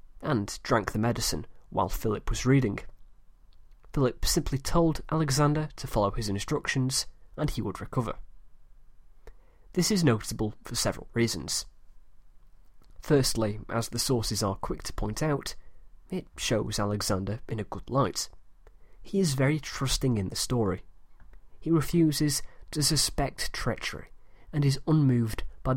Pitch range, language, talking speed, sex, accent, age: 100-145 Hz, English, 135 wpm, male, British, 20-39